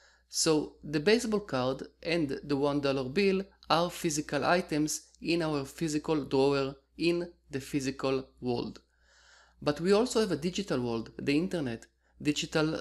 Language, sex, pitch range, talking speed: English, male, 135-170 Hz, 140 wpm